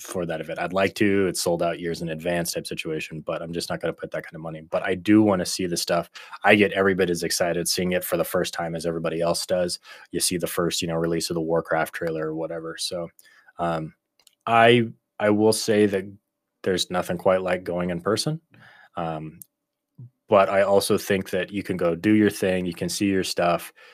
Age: 20-39